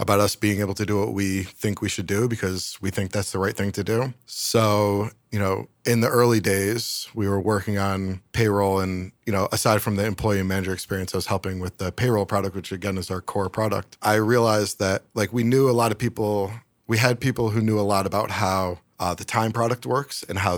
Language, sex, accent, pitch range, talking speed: English, male, American, 100-115 Hz, 240 wpm